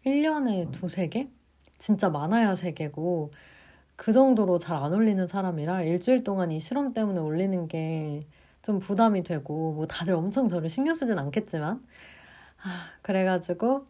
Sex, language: female, Korean